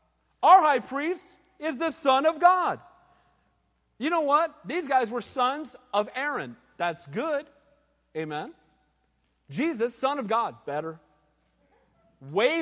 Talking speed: 125 wpm